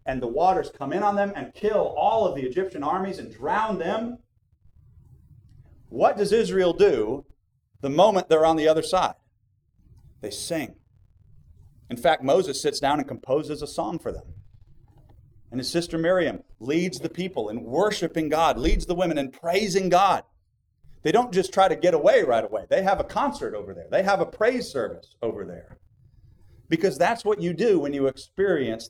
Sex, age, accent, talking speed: male, 40-59, American, 180 wpm